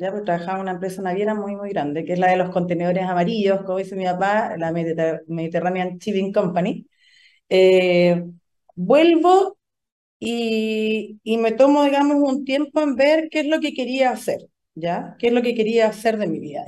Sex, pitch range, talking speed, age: female, 185-260 Hz, 190 wpm, 40-59